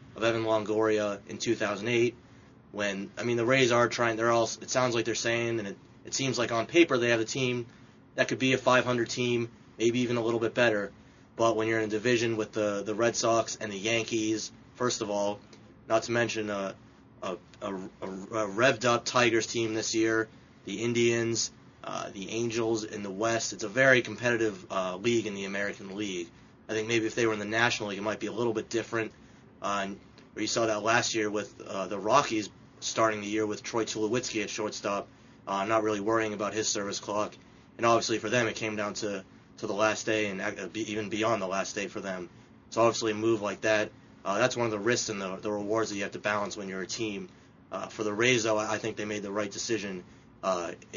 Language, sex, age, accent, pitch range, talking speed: English, male, 20-39, American, 100-115 Hz, 225 wpm